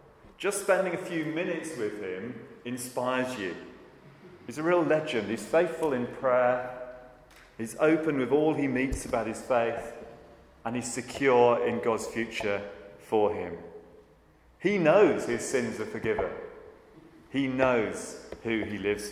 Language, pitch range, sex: English, 100-130 Hz, male